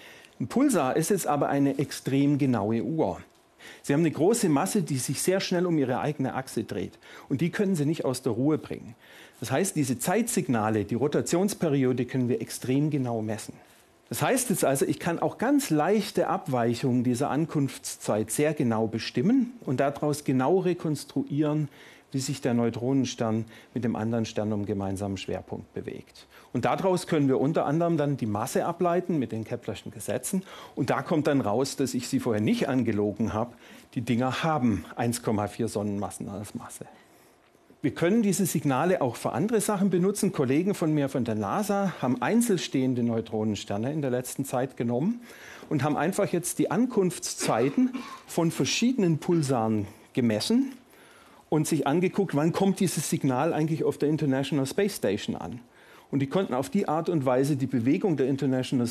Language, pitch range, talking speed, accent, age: German, 120-170 Hz, 170 wpm, German, 40-59